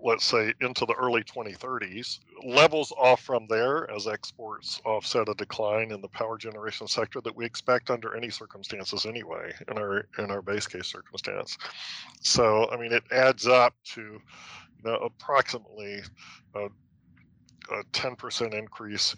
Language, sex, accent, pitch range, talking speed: English, male, American, 105-125 Hz, 155 wpm